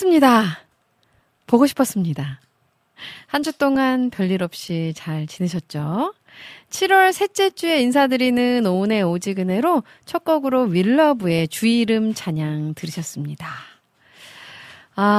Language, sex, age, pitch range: Korean, female, 40-59, 170-260 Hz